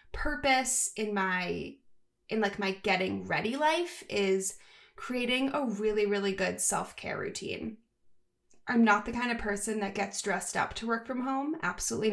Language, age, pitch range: English, 20-39, 195-230 Hz